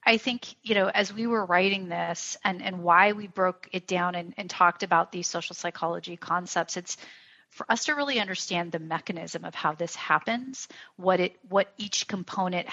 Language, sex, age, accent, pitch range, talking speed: English, female, 30-49, American, 175-205 Hz, 195 wpm